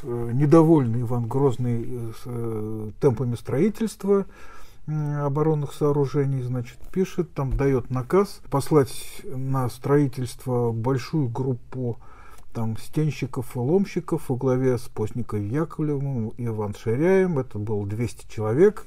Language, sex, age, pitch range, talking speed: Russian, male, 50-69, 115-145 Hz, 110 wpm